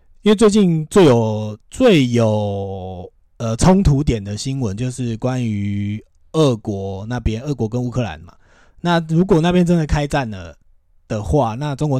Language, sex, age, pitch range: Chinese, male, 20-39, 105-135 Hz